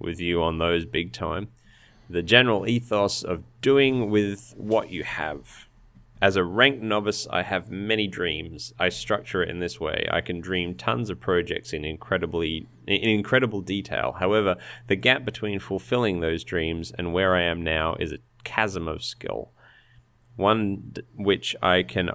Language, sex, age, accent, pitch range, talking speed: English, male, 30-49, Australian, 85-110 Hz, 165 wpm